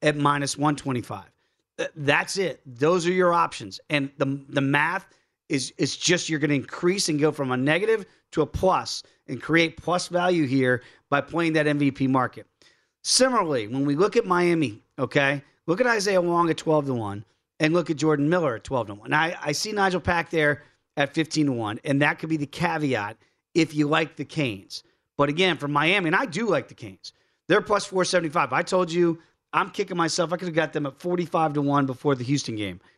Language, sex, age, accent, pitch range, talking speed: English, male, 40-59, American, 140-175 Hz, 205 wpm